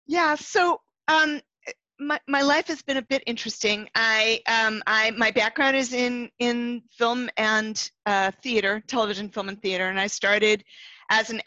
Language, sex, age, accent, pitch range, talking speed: English, female, 40-59, American, 200-250 Hz, 165 wpm